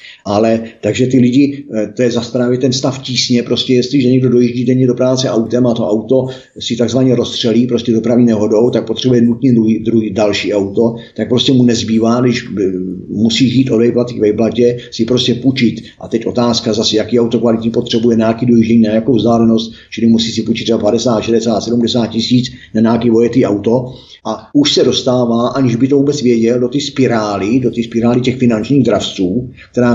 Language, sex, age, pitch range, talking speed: Czech, male, 50-69, 110-130 Hz, 185 wpm